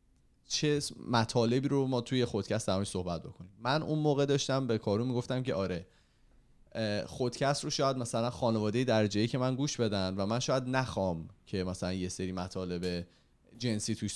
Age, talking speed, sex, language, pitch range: 30-49, 165 wpm, male, Persian, 95-130 Hz